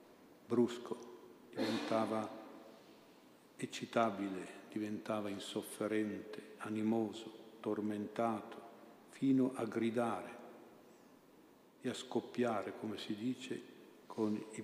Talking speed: 75 wpm